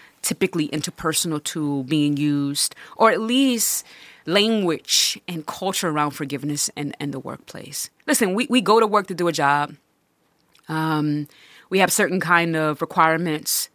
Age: 30-49